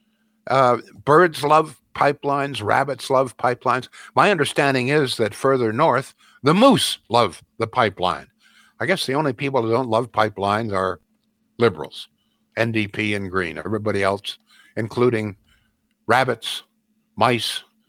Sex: male